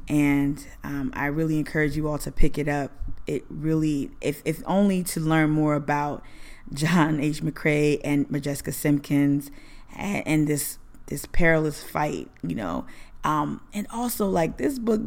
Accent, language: American, English